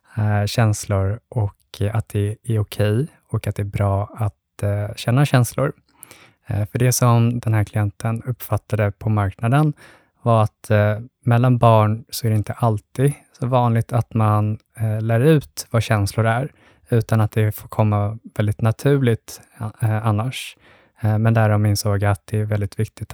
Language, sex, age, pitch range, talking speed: Swedish, male, 20-39, 105-115 Hz, 155 wpm